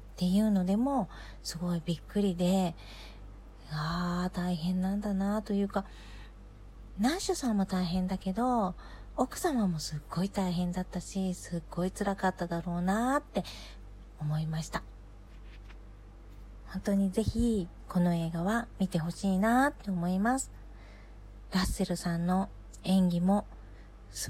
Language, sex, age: Japanese, female, 40-59